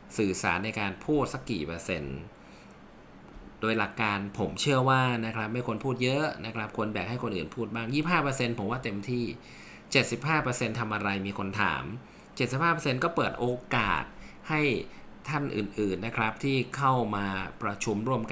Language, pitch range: Thai, 105-130 Hz